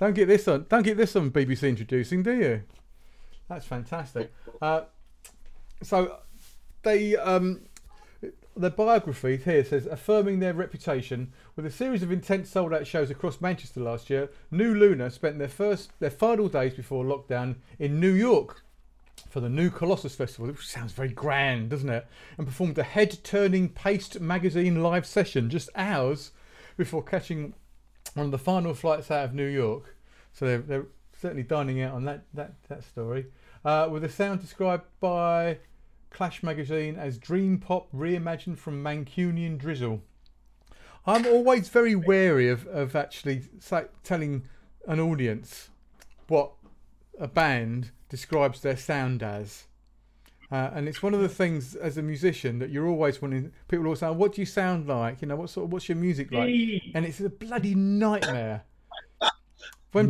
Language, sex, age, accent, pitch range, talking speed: English, male, 40-59, British, 130-185 Hz, 160 wpm